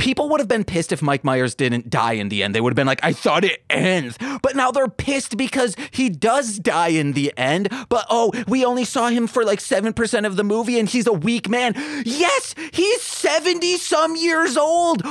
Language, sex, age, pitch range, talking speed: English, male, 30-49, 220-275 Hz, 220 wpm